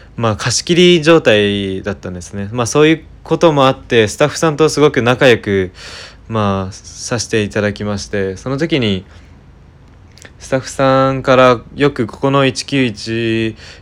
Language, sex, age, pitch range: Japanese, male, 20-39, 100-125 Hz